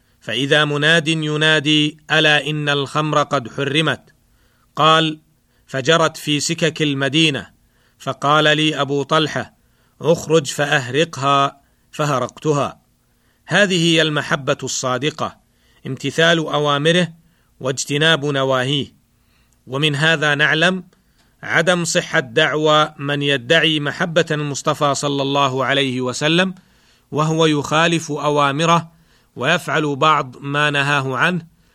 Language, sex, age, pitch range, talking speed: Arabic, male, 40-59, 140-160 Hz, 95 wpm